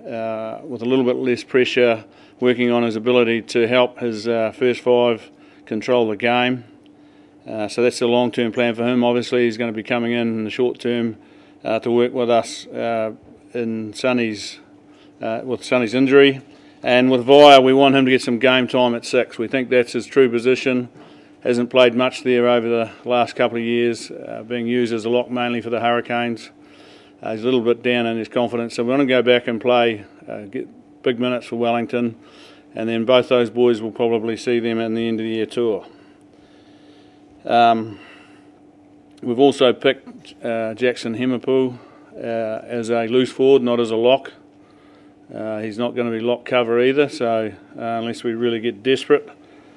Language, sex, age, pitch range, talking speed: English, male, 40-59, 115-125 Hz, 195 wpm